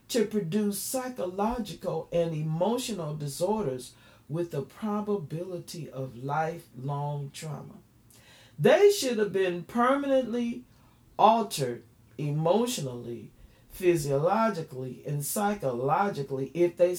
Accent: American